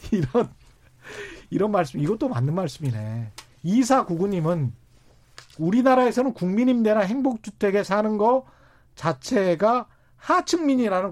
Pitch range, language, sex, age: 150-225 Hz, Korean, male, 40-59